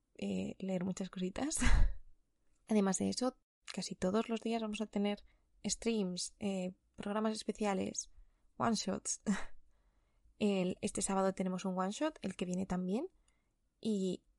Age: 20-39